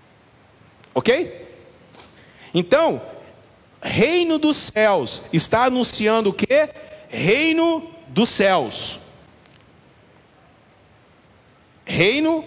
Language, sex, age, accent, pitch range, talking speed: Portuguese, male, 40-59, Brazilian, 185-240 Hz, 65 wpm